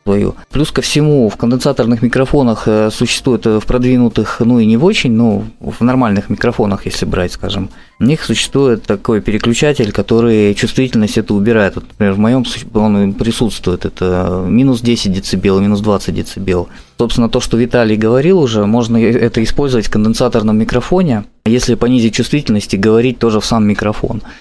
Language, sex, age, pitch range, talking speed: Russian, male, 20-39, 110-130 Hz, 160 wpm